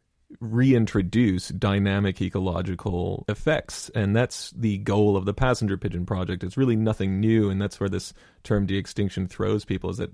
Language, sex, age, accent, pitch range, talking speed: English, male, 30-49, American, 100-115 Hz, 160 wpm